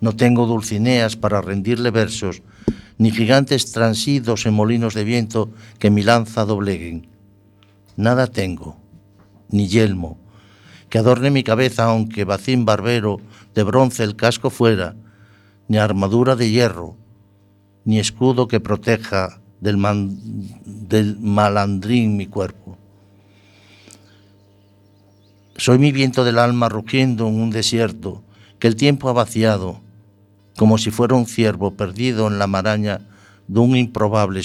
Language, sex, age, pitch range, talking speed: Spanish, male, 60-79, 100-115 Hz, 125 wpm